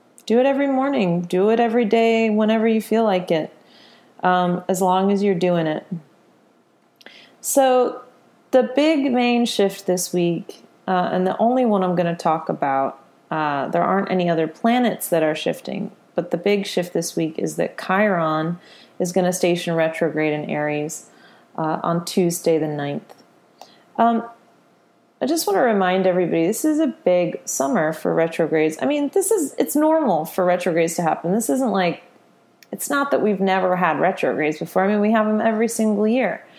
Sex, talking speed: female, 180 wpm